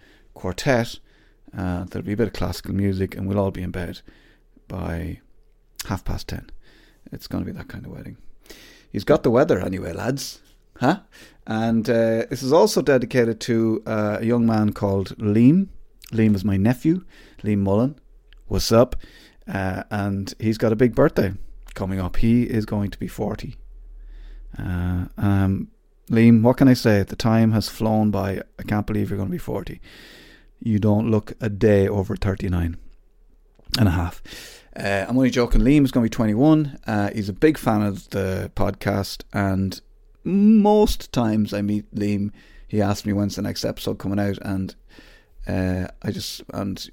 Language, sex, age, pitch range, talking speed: English, male, 30-49, 95-115 Hz, 175 wpm